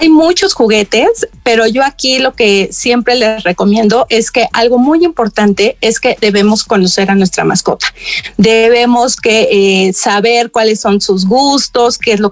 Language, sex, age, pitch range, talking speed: Spanish, female, 30-49, 205-245 Hz, 165 wpm